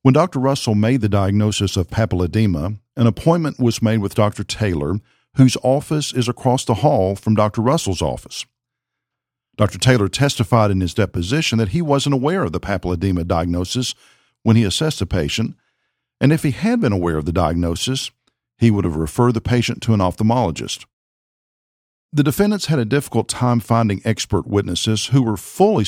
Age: 50-69